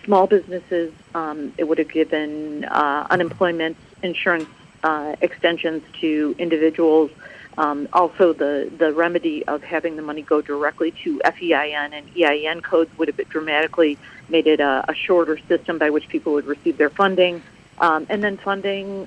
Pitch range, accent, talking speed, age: 150-175 Hz, American, 160 wpm, 50-69